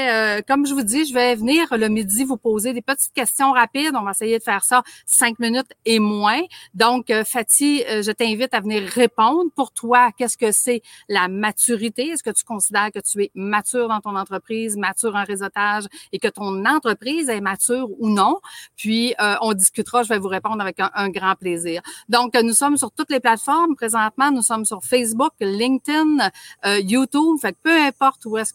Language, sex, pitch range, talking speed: French, female, 195-250 Hz, 200 wpm